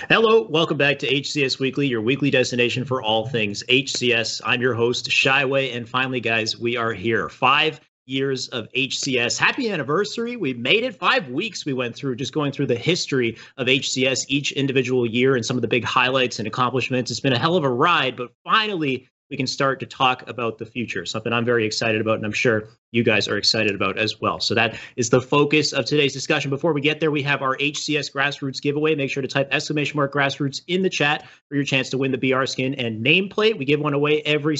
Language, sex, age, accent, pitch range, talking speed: English, male, 30-49, American, 125-150 Hz, 225 wpm